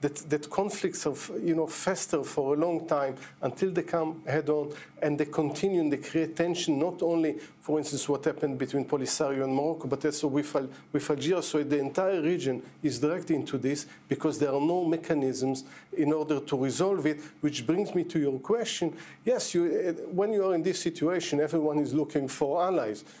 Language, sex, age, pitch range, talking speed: English, male, 50-69, 140-170 Hz, 195 wpm